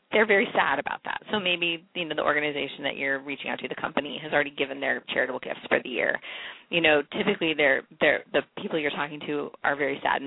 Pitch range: 150-245 Hz